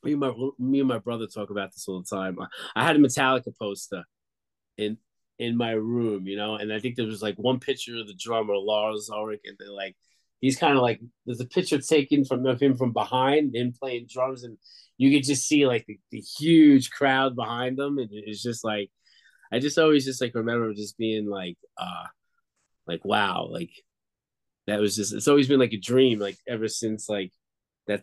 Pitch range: 105-140 Hz